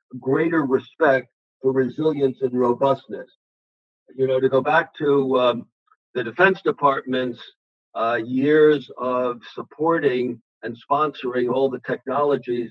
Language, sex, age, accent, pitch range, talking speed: English, male, 50-69, American, 125-155 Hz, 120 wpm